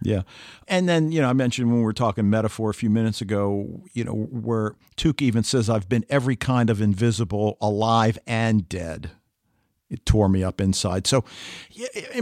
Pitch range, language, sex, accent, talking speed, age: 105-130 Hz, English, male, American, 185 wpm, 50-69